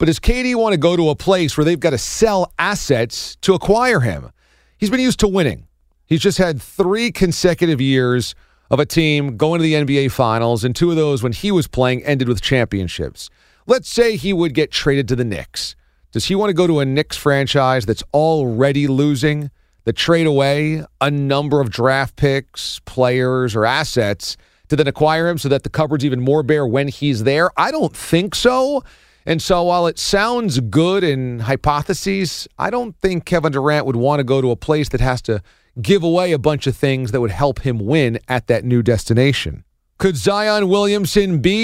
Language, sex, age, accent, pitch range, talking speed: English, male, 40-59, American, 130-175 Hz, 200 wpm